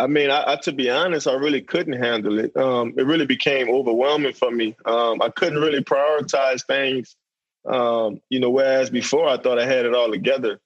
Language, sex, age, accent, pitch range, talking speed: English, male, 20-39, American, 115-135 Hz, 210 wpm